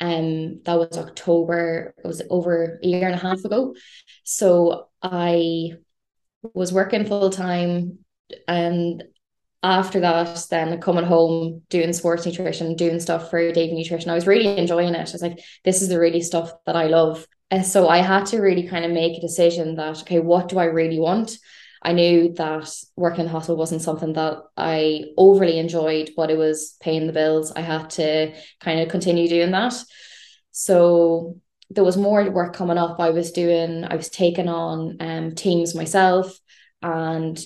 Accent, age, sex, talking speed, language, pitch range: Irish, 10-29, female, 180 wpm, English, 165-180 Hz